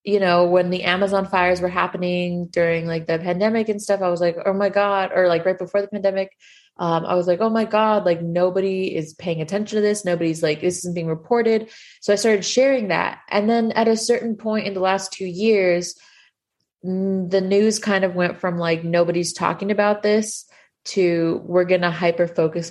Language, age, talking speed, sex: English, 20-39, 205 wpm, female